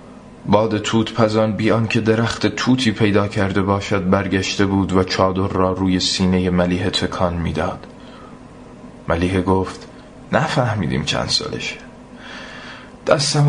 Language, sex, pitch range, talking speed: Persian, male, 90-110 Hz, 120 wpm